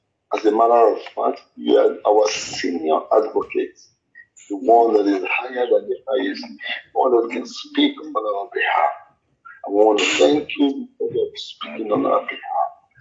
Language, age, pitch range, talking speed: English, 50-69, 285-420 Hz, 170 wpm